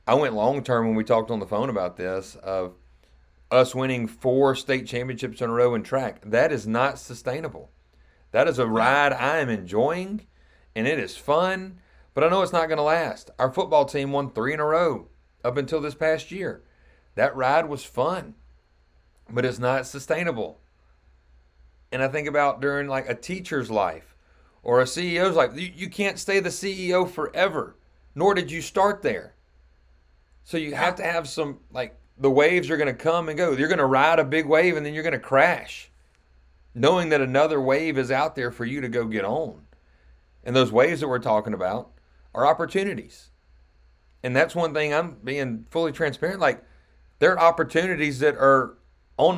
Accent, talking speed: American, 190 wpm